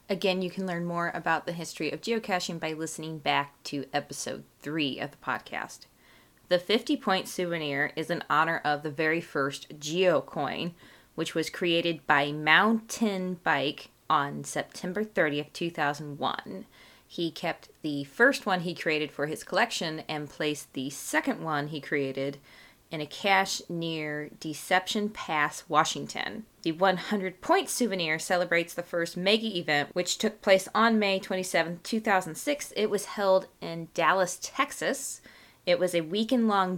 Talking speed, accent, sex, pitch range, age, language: 145 wpm, American, female, 155-195 Hz, 20-39, English